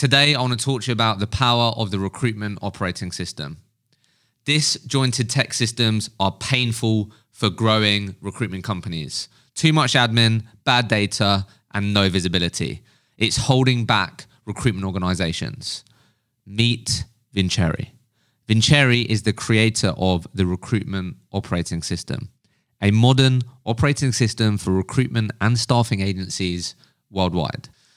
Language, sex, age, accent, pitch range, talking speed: English, male, 20-39, British, 100-125 Hz, 125 wpm